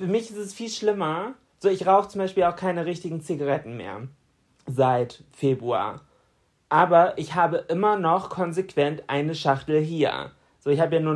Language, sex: German, male